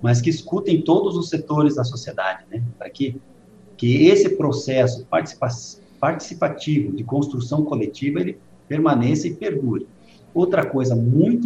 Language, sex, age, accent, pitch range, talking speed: Portuguese, male, 50-69, Brazilian, 115-150 Hz, 130 wpm